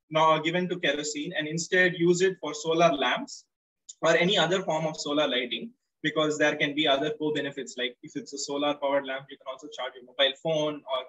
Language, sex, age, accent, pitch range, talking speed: English, male, 20-39, Indian, 140-175 Hz, 215 wpm